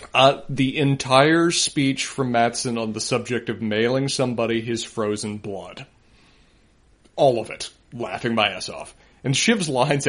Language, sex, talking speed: English, male, 150 wpm